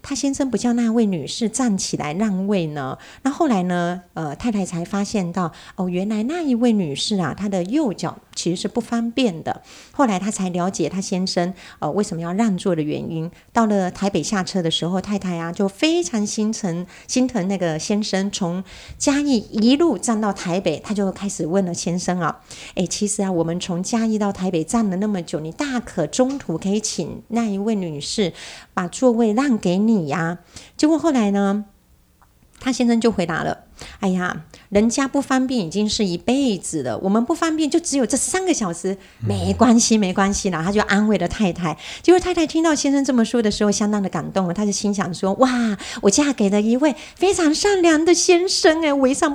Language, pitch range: Chinese, 185-255 Hz